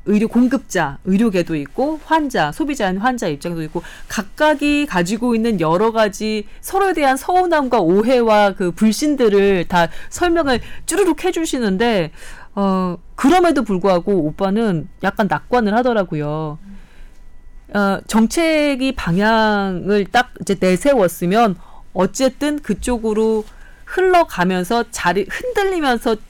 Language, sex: Korean, female